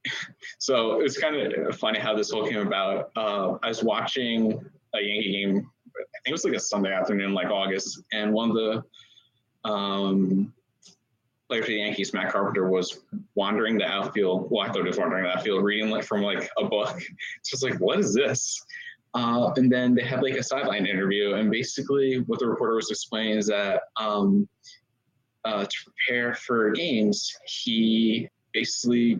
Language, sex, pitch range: English, male, 105-145 Hz